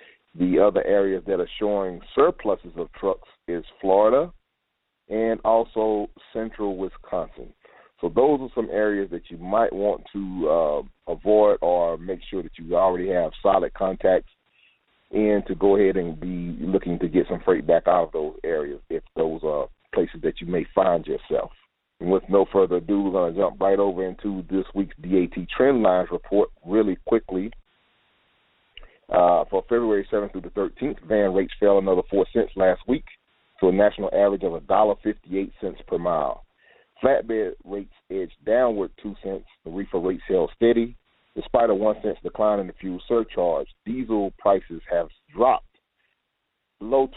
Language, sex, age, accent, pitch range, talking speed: English, male, 40-59, American, 90-110 Hz, 165 wpm